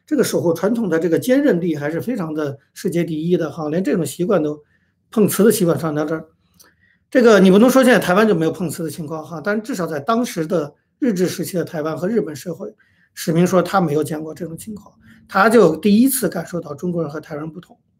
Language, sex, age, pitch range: Chinese, male, 50-69, 160-210 Hz